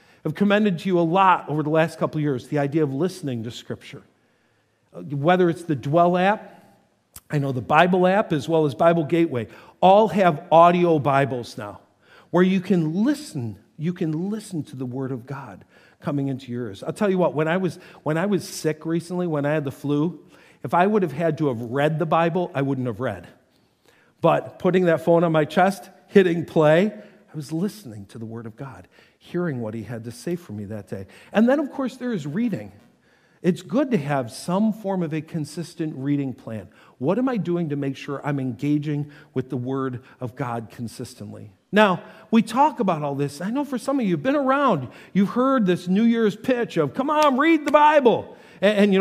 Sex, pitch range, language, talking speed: male, 140-200 Hz, English, 210 wpm